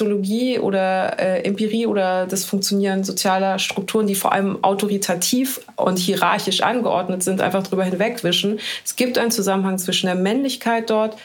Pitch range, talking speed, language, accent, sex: 180-205 Hz, 145 wpm, German, German, female